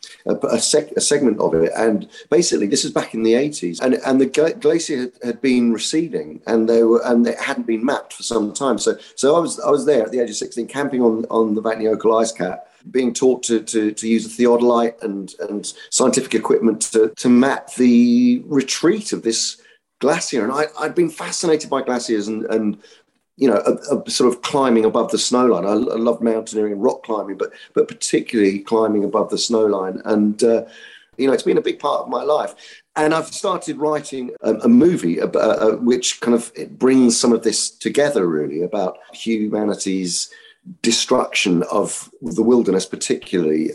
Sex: male